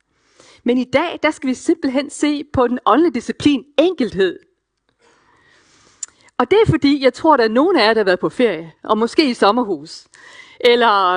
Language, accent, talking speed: Danish, native, 185 wpm